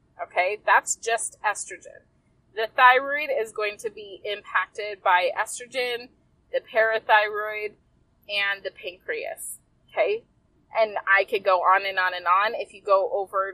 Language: English